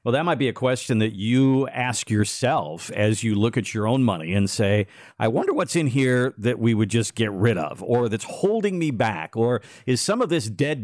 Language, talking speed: English, 235 wpm